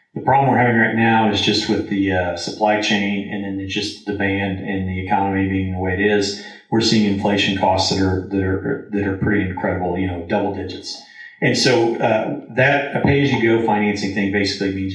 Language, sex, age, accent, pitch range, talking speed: English, male, 30-49, American, 95-110 Hz, 220 wpm